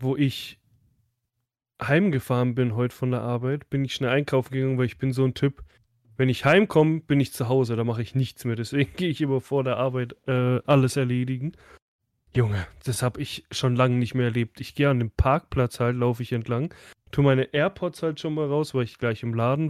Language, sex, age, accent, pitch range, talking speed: German, male, 10-29, German, 125-170 Hz, 215 wpm